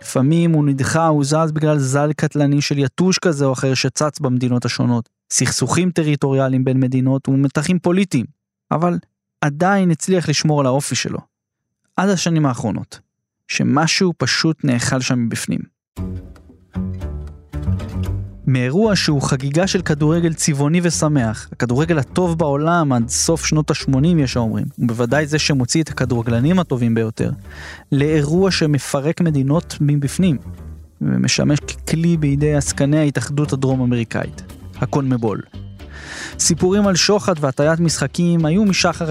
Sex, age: male, 20-39